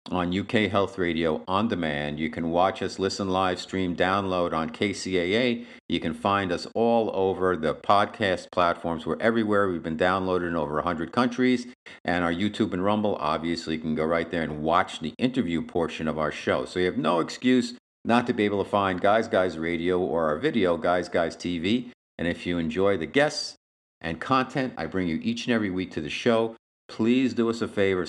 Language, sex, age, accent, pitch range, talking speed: English, male, 50-69, American, 85-110 Hz, 205 wpm